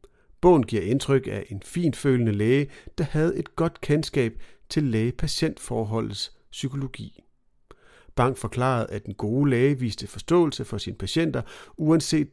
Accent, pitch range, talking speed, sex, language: native, 115-150 Hz, 130 wpm, male, Danish